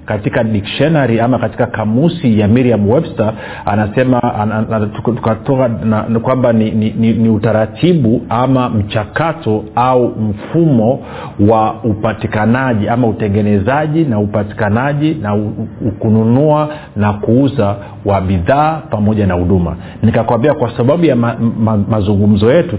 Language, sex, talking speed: Swahili, male, 125 wpm